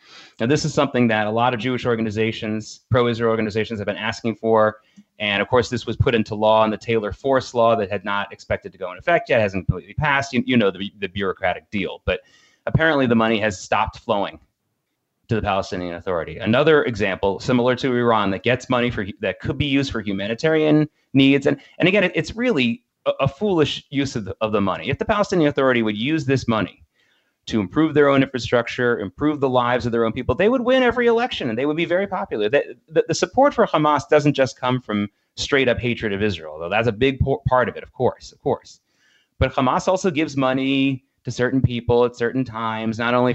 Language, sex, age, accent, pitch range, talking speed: English, male, 30-49, American, 110-145 Hz, 225 wpm